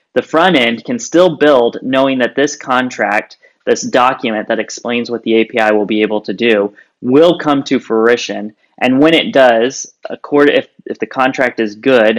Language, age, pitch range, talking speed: English, 20-39, 110-130 Hz, 170 wpm